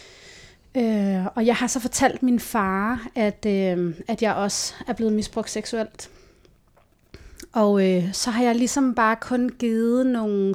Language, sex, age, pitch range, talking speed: Danish, female, 30-49, 205-235 Hz, 155 wpm